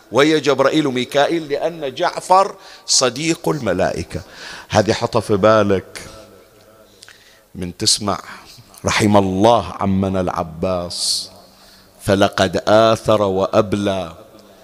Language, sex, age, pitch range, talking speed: Arabic, male, 50-69, 105-155 Hz, 80 wpm